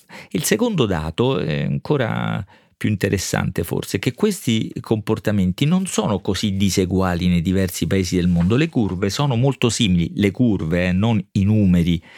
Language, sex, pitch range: Italian, male, 95-125 Hz